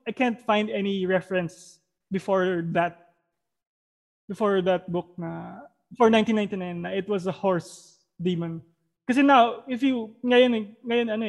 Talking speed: 135 wpm